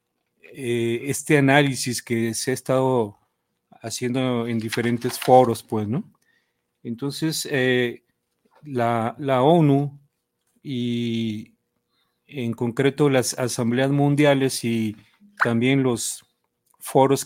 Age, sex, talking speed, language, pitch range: 40-59, male, 95 wpm, Spanish, 115-135 Hz